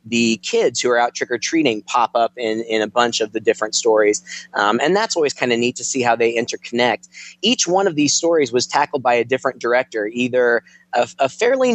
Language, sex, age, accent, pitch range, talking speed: English, male, 20-39, American, 115-160 Hz, 215 wpm